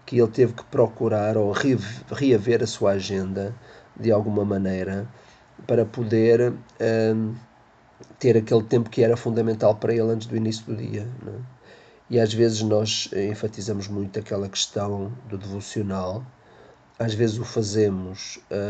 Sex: male